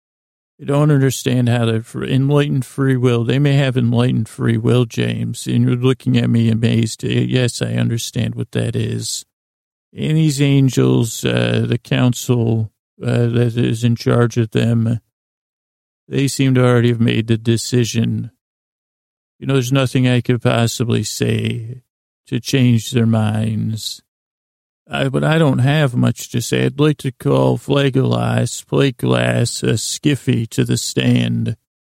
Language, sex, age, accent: English, male, 40-59, American